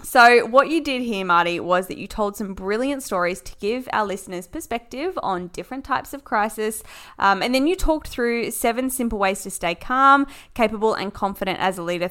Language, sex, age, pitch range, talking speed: English, female, 10-29, 185-245 Hz, 205 wpm